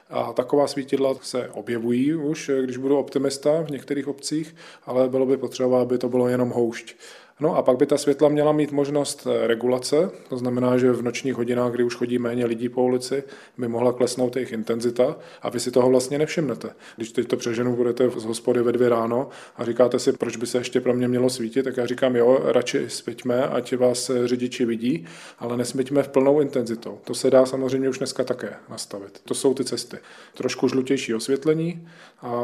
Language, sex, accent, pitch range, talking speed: Czech, male, native, 120-135 Hz, 200 wpm